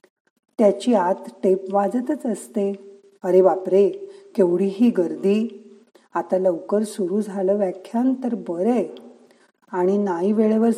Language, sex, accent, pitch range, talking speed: Marathi, female, native, 190-240 Hz, 115 wpm